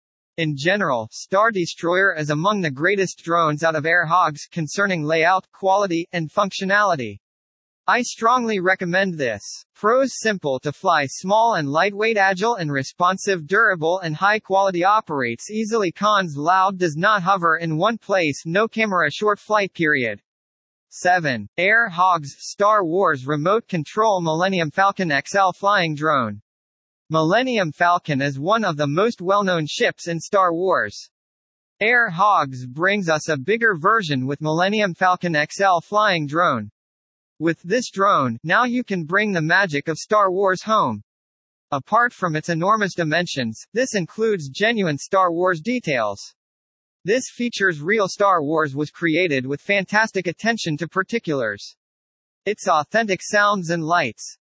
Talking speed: 140 wpm